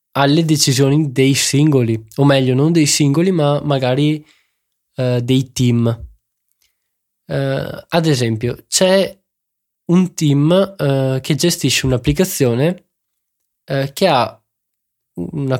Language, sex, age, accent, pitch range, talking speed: Italian, male, 20-39, native, 125-155 Hz, 105 wpm